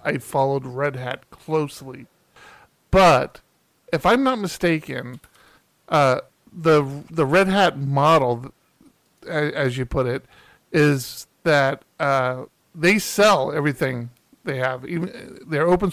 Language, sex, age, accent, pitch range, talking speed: English, male, 50-69, American, 140-185 Hz, 120 wpm